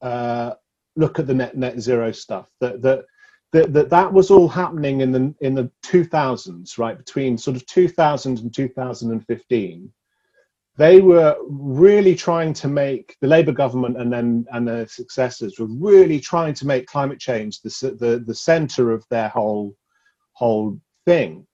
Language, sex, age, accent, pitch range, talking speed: English, male, 40-59, British, 120-160 Hz, 160 wpm